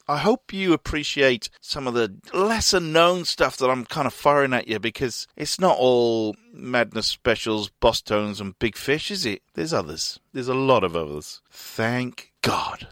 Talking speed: 180 wpm